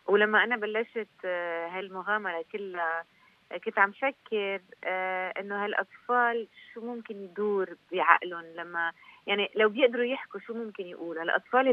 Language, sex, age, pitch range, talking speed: Arabic, female, 30-49, 180-220 Hz, 120 wpm